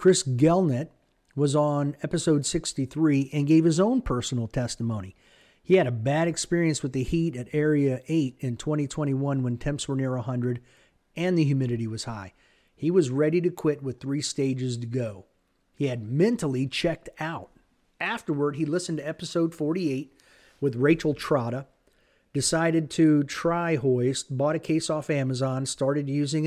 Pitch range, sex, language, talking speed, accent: 130-160 Hz, male, English, 160 wpm, American